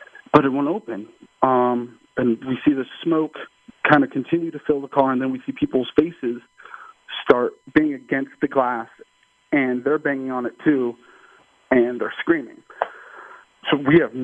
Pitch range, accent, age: 115-150 Hz, American, 40-59